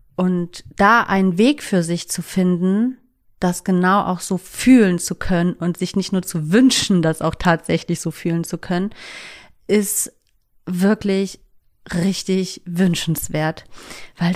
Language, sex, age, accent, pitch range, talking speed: German, female, 30-49, German, 170-200 Hz, 140 wpm